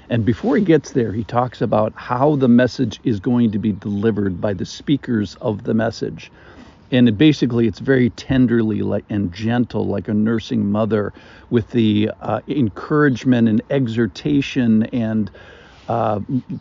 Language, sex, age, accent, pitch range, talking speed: English, male, 50-69, American, 105-130 Hz, 150 wpm